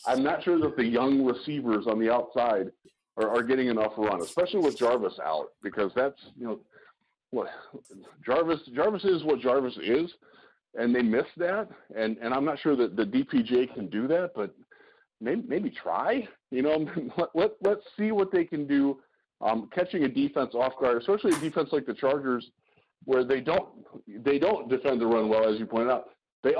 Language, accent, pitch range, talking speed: English, American, 120-175 Hz, 195 wpm